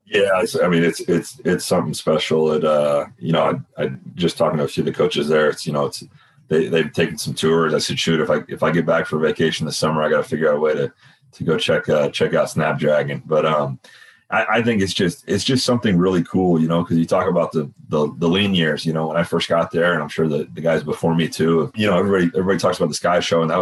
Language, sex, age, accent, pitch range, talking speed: English, male, 30-49, American, 80-90 Hz, 280 wpm